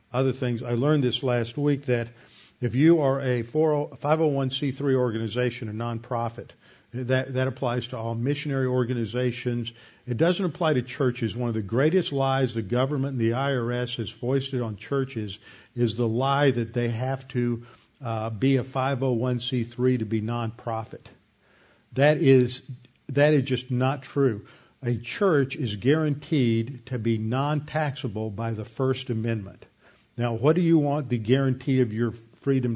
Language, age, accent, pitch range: English, 50-69, American, 115-135 Hz